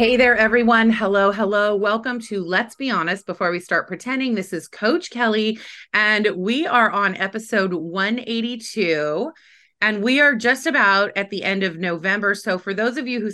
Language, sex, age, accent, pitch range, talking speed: English, female, 30-49, American, 170-230 Hz, 180 wpm